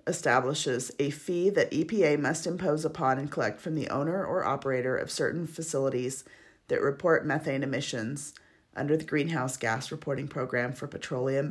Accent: American